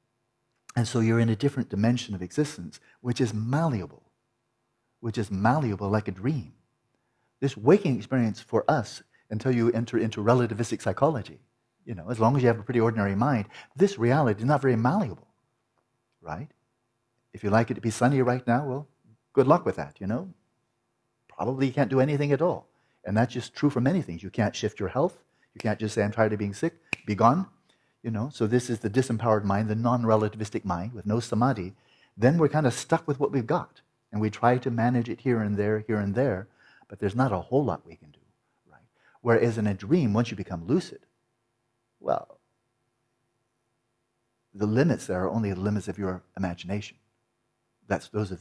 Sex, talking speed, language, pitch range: male, 200 wpm, English, 105-125 Hz